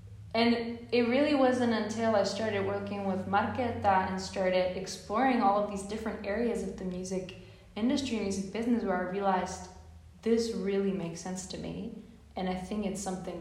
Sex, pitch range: female, 180-220 Hz